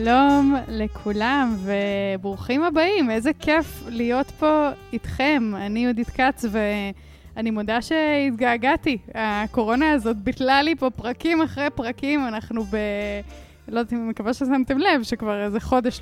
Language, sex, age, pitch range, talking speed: Hebrew, female, 20-39, 210-270 Hz, 130 wpm